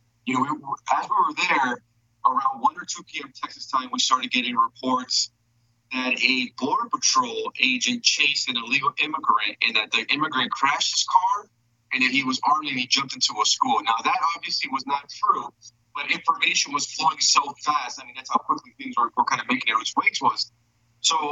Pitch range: 120-170 Hz